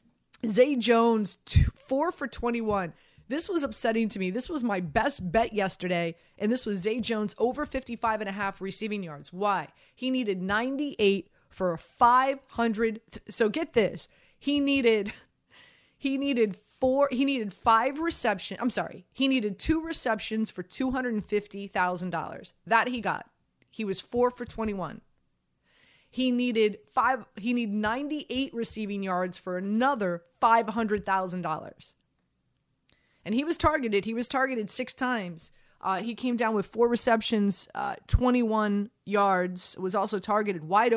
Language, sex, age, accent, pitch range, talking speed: English, female, 30-49, American, 190-245 Hz, 140 wpm